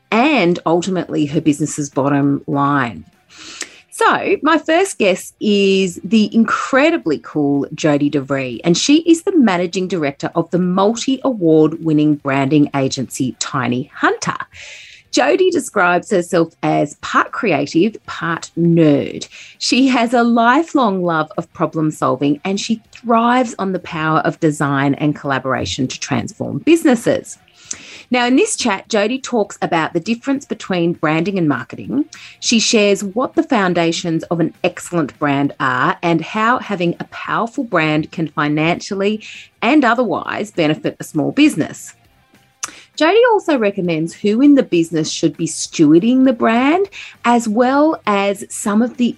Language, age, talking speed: English, 30-49, 140 wpm